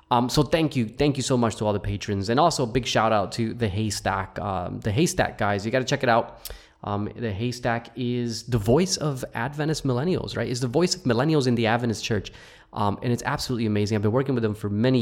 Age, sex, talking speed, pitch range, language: 20-39, male, 245 wpm, 105-135 Hz, English